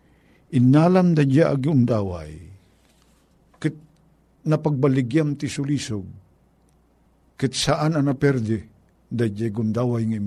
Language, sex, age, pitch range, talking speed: Filipino, male, 50-69, 100-150 Hz, 110 wpm